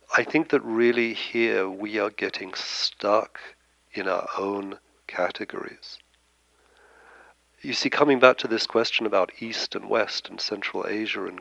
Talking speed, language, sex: 145 wpm, English, male